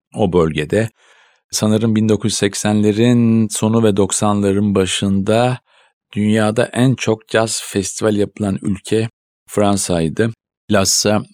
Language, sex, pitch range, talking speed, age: Turkish, male, 90-110 Hz, 90 wpm, 50-69